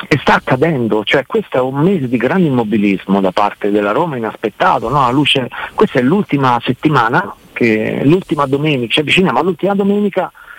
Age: 50-69